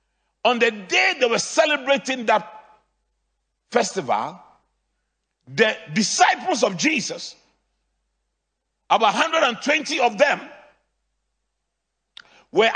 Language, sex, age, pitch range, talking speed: English, male, 50-69, 200-280 Hz, 80 wpm